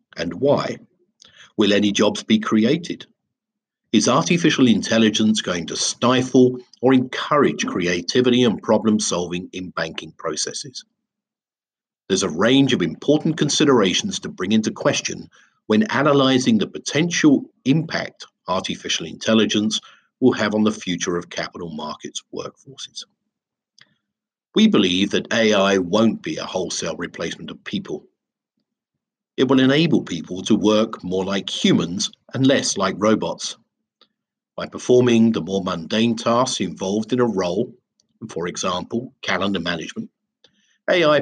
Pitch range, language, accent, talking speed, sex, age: 105-145 Hz, English, British, 125 wpm, male, 50-69